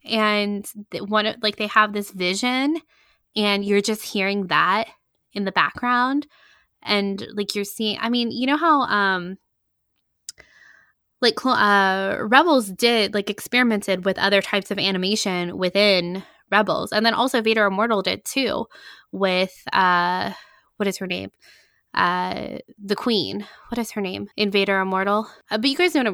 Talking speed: 150 wpm